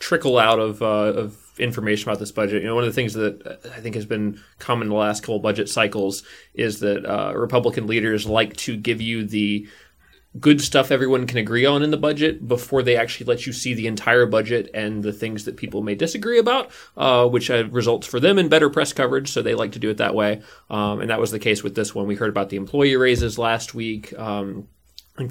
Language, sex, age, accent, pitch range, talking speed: English, male, 20-39, American, 105-120 Hz, 235 wpm